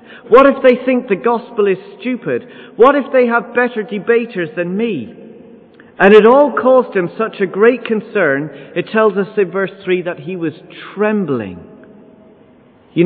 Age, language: 40-59, English